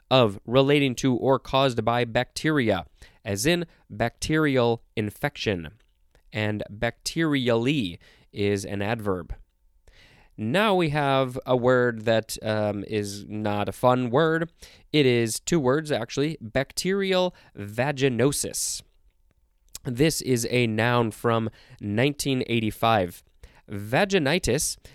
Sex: male